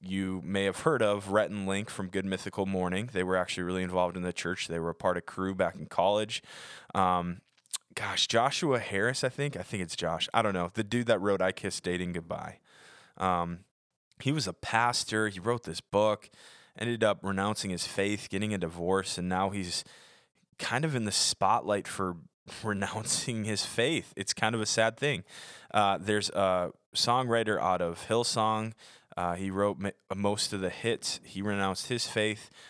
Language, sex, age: English, male, 20-39